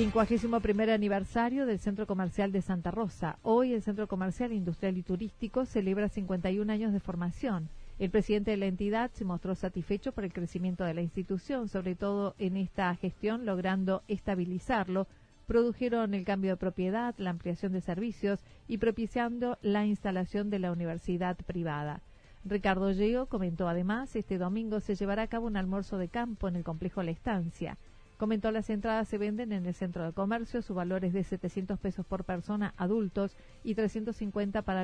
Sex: female